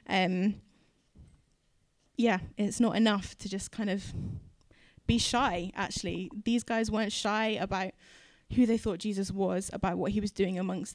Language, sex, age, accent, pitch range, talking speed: English, female, 10-29, British, 190-220 Hz, 155 wpm